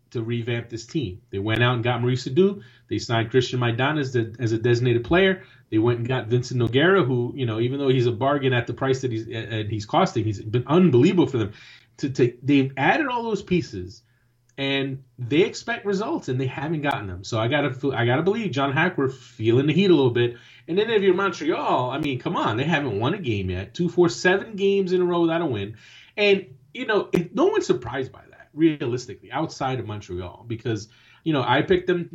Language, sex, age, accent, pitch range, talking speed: English, male, 30-49, American, 120-180 Hz, 230 wpm